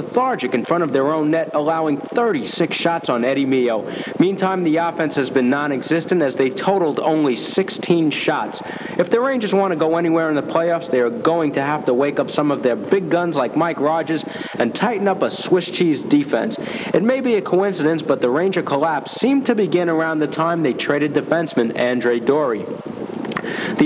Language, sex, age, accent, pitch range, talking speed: English, male, 60-79, American, 145-185 Hz, 200 wpm